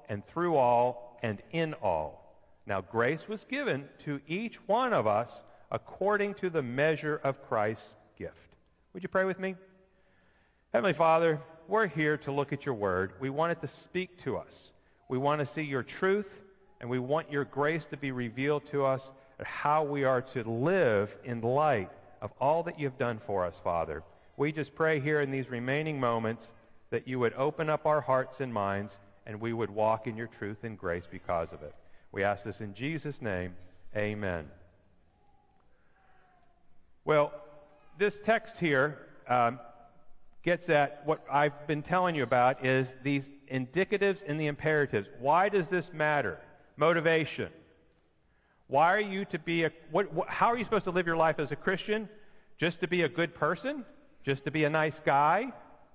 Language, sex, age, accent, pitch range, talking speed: English, male, 50-69, American, 120-165 Hz, 175 wpm